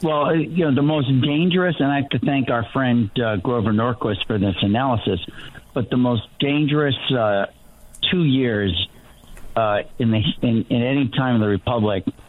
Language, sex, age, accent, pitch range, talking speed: English, male, 50-69, American, 115-150 Hz, 175 wpm